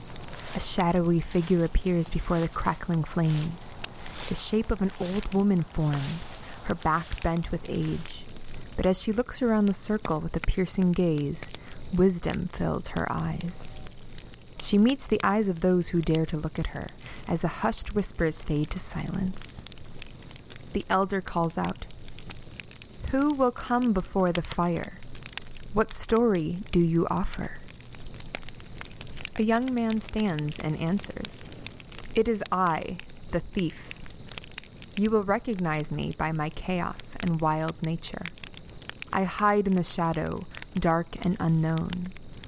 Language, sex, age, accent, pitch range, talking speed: English, female, 20-39, American, 160-195 Hz, 140 wpm